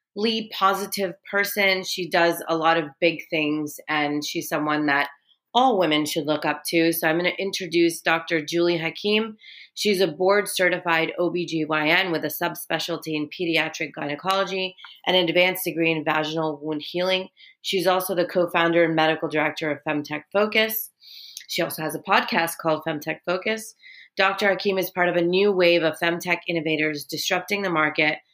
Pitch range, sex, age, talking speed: 160-185 Hz, female, 30-49, 165 wpm